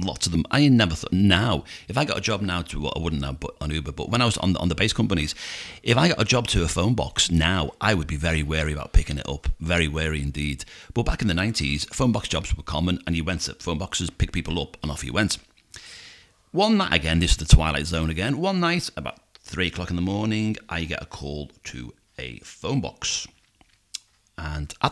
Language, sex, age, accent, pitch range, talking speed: English, male, 40-59, British, 80-105 Hz, 245 wpm